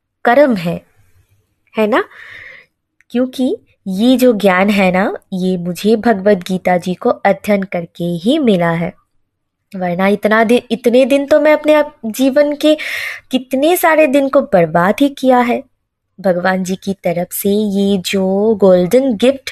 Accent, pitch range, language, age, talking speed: native, 180-245 Hz, Hindi, 20-39, 150 wpm